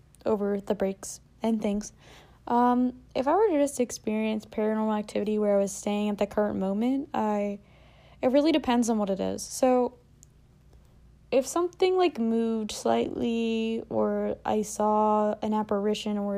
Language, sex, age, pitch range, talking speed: English, female, 10-29, 200-240 Hz, 155 wpm